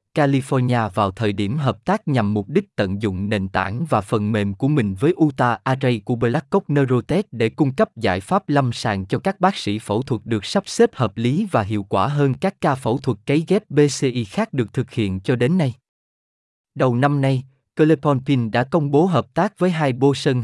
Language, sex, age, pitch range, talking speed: Vietnamese, male, 20-39, 110-150 Hz, 215 wpm